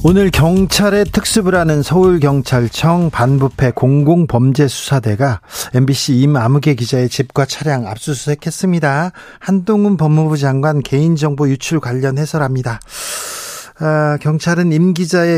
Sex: male